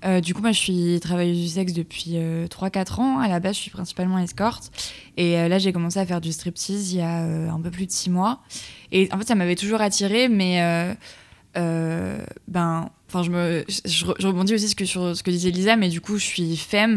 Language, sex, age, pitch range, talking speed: French, female, 20-39, 170-195 Hz, 250 wpm